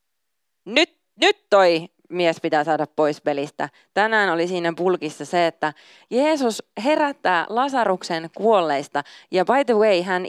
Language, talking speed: Finnish, 135 wpm